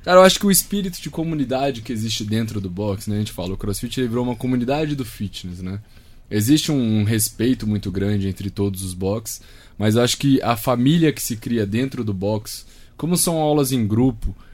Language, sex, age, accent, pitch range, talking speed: Portuguese, male, 20-39, Brazilian, 110-140 Hz, 205 wpm